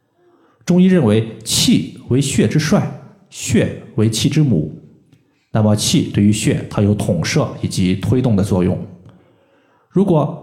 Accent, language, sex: native, Chinese, male